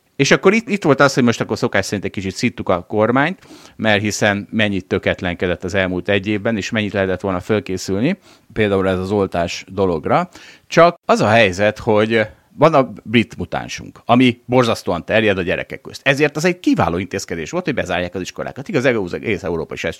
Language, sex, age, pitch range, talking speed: Hungarian, male, 30-49, 95-135 Hz, 190 wpm